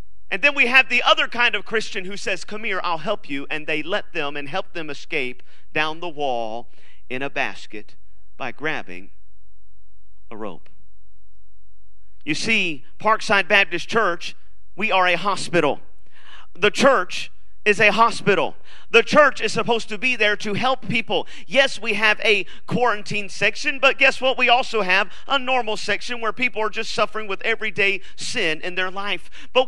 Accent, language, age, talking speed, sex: American, English, 40-59, 170 wpm, male